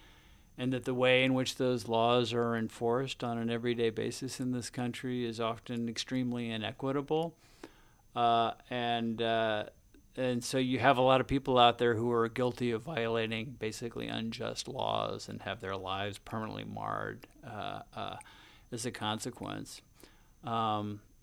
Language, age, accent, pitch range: English, 50-69, American, 115-125 Hz